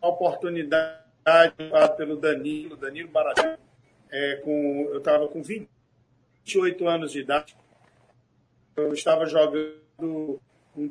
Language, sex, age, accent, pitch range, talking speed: Portuguese, male, 50-69, Brazilian, 145-185 Hz, 95 wpm